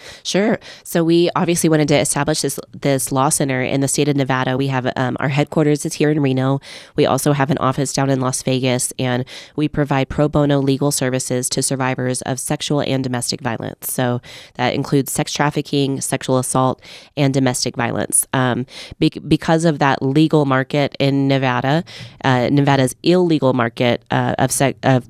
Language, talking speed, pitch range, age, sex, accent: English, 175 wpm, 125-140 Hz, 20-39, female, American